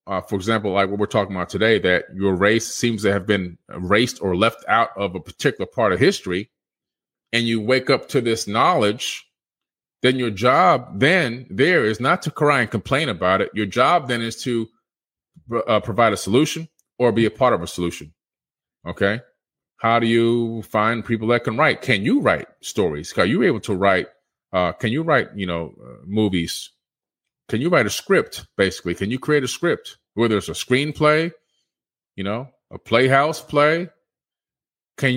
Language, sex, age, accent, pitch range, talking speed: English, male, 30-49, American, 105-135 Hz, 185 wpm